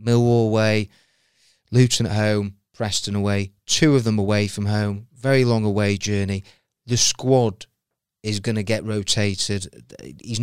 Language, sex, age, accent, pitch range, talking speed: English, male, 30-49, British, 100-120 Hz, 145 wpm